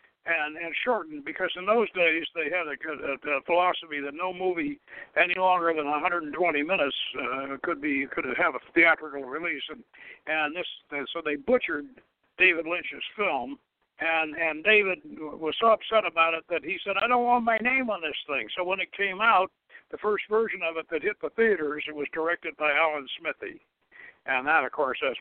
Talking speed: 200 wpm